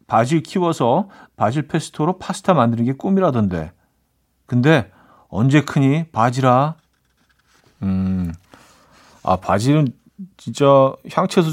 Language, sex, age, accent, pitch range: Korean, male, 40-59, native, 105-155 Hz